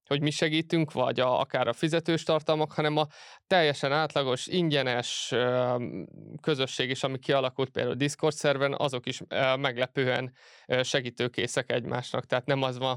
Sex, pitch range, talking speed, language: male, 135-155 Hz, 155 wpm, Hungarian